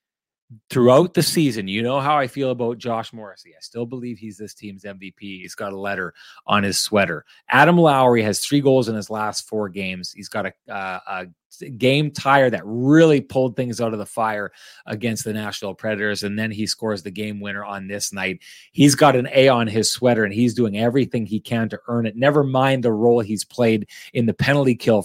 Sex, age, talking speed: male, 30-49, 215 wpm